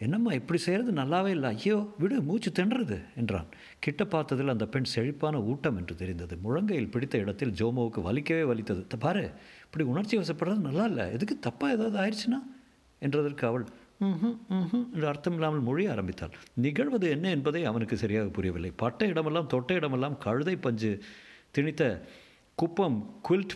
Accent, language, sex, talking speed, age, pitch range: native, Tamil, male, 145 wpm, 50-69, 115-160 Hz